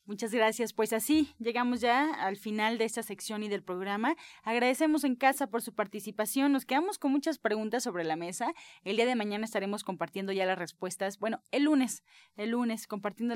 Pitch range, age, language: 205-265 Hz, 20-39, Spanish